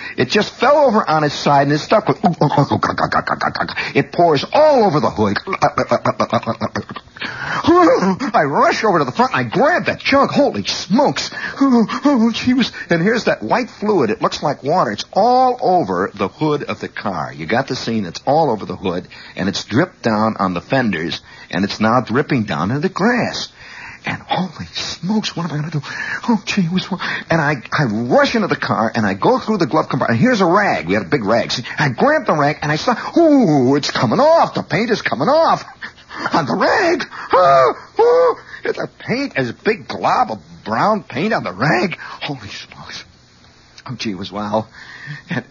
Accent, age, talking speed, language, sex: American, 60-79, 195 wpm, English, male